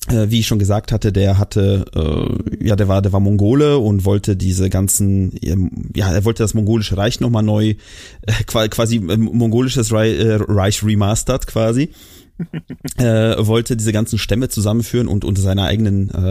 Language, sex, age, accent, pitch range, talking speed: German, male, 30-49, German, 100-120 Hz, 145 wpm